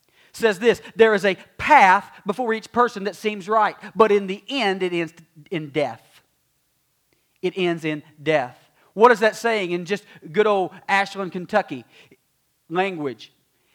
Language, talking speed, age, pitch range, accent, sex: English, 155 wpm, 40-59, 170-225 Hz, American, male